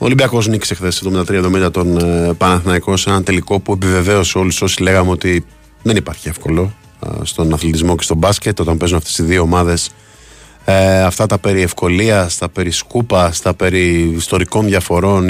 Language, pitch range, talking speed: Greek, 80-100 Hz, 170 wpm